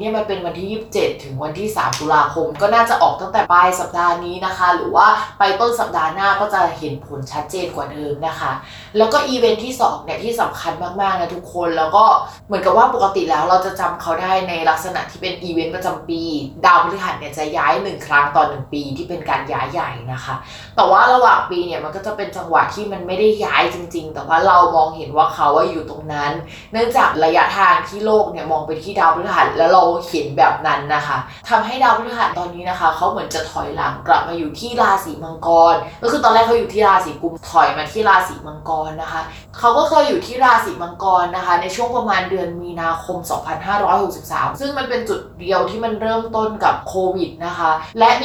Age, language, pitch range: 20-39, Thai, 160-210 Hz